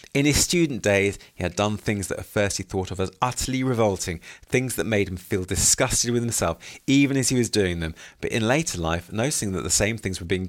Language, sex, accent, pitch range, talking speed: English, male, British, 90-115 Hz, 240 wpm